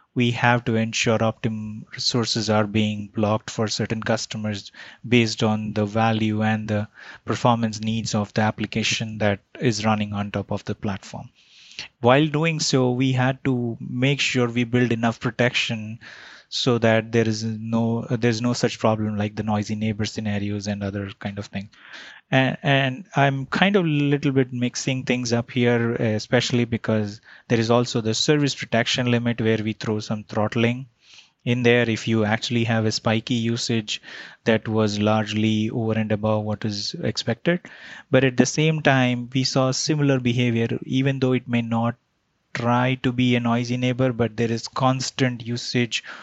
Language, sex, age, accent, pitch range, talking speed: English, male, 20-39, Indian, 110-125 Hz, 170 wpm